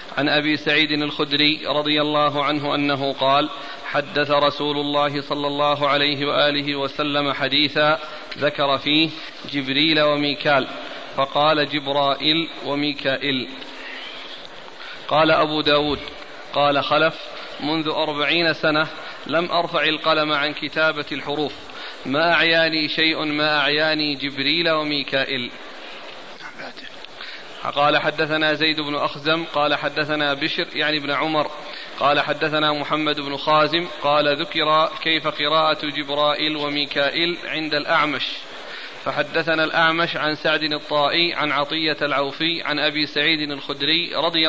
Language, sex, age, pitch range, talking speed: Arabic, male, 40-59, 145-155 Hz, 110 wpm